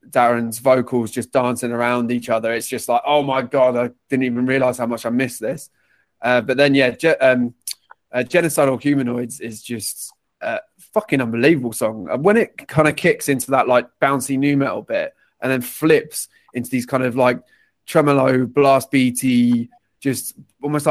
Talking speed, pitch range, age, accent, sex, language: 180 wpm, 120-135 Hz, 20-39, British, male, English